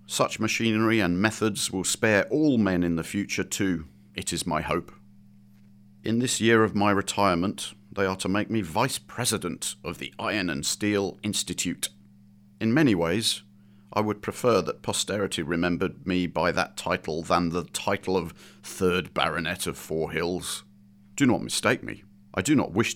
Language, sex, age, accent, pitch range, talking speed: English, male, 40-59, British, 85-105 Hz, 165 wpm